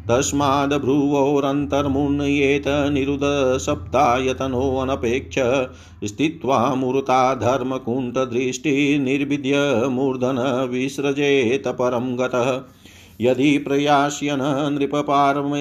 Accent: native